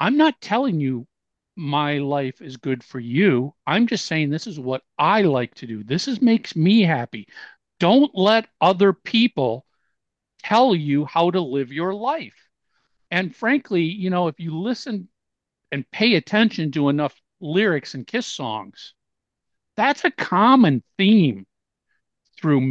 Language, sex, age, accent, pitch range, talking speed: English, male, 50-69, American, 140-210 Hz, 150 wpm